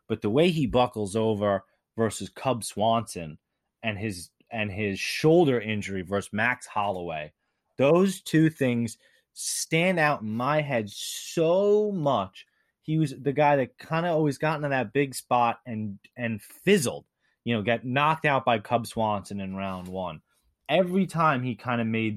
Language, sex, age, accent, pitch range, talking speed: English, male, 20-39, American, 100-145 Hz, 165 wpm